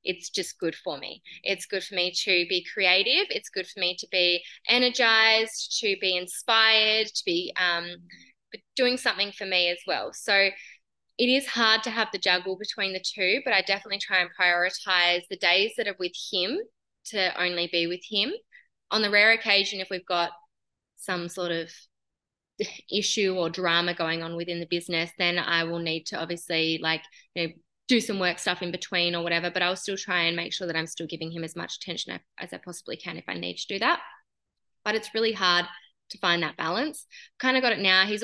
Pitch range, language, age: 175-210 Hz, English, 20-39